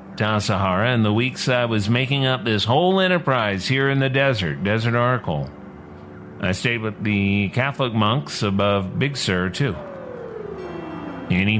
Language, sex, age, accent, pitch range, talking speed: English, male, 50-69, American, 105-135 Hz, 145 wpm